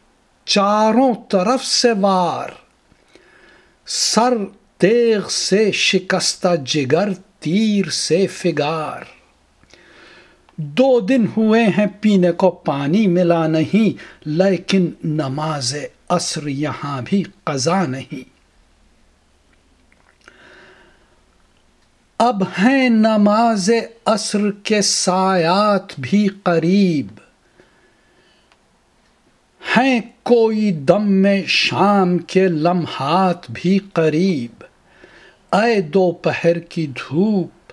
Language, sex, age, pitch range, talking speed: Urdu, male, 60-79, 155-205 Hz, 80 wpm